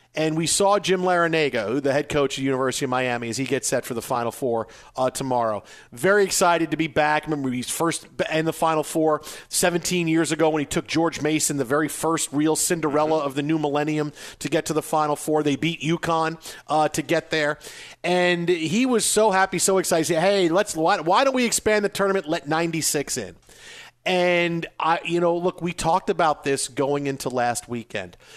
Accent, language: American, English